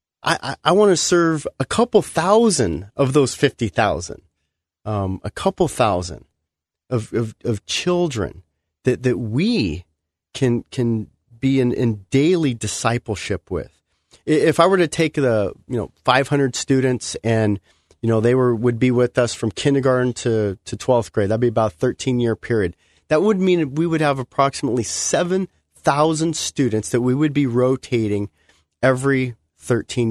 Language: English